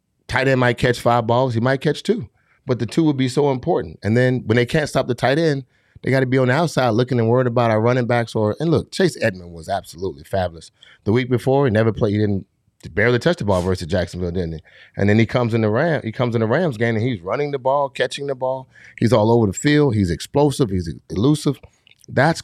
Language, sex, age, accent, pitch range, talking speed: English, male, 30-49, American, 100-125 Hz, 255 wpm